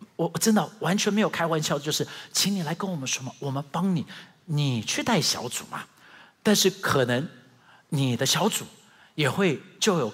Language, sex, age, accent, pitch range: Chinese, male, 50-69, native, 130-210 Hz